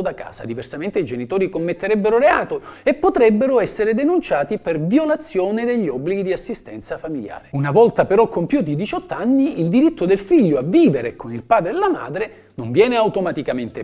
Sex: male